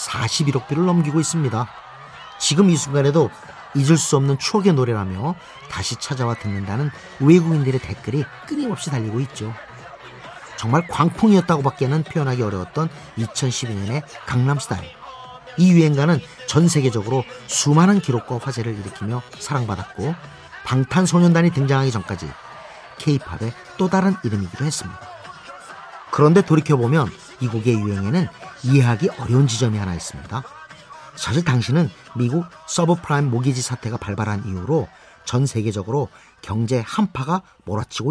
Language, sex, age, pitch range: Korean, male, 40-59, 120-165 Hz